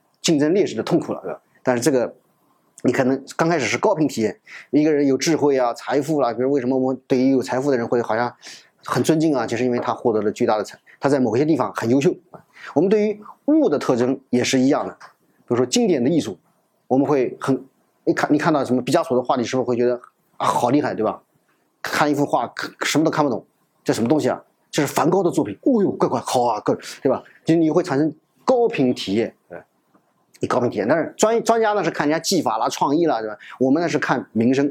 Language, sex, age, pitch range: Chinese, male, 30-49, 125-155 Hz